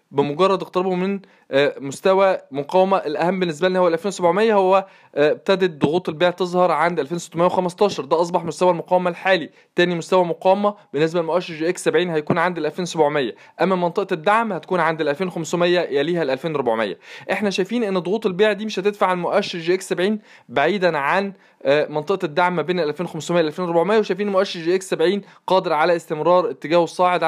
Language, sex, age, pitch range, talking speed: Arabic, male, 20-39, 160-190 Hz, 170 wpm